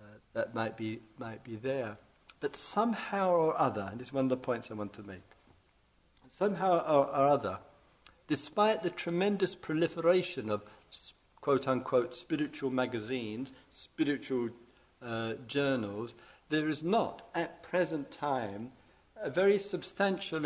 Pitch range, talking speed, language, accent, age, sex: 115-170 Hz, 130 wpm, English, British, 50-69, male